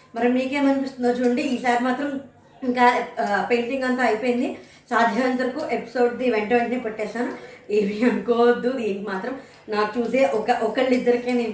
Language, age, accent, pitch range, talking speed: Telugu, 20-39, native, 205-245 Hz, 120 wpm